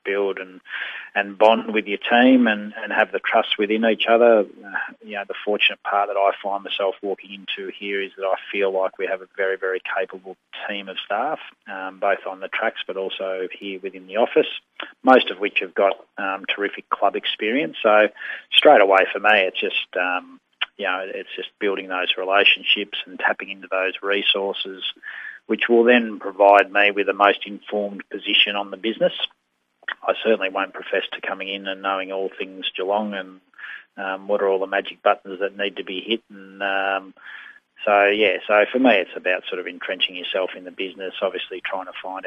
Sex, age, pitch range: male, 30-49, 95-105 Hz